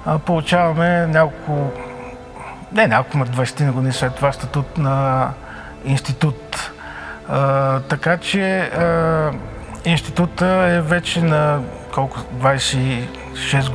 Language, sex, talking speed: Bulgarian, male, 85 wpm